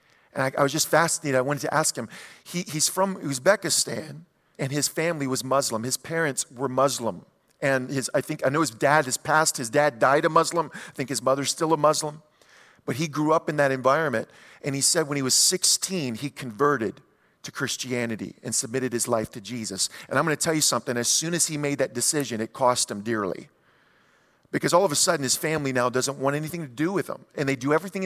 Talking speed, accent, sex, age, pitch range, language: 230 wpm, American, male, 40-59, 130-165 Hz, English